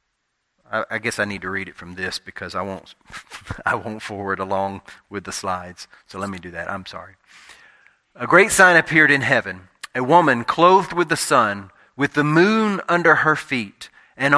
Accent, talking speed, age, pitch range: American, 190 wpm, 30-49, 100-145 Hz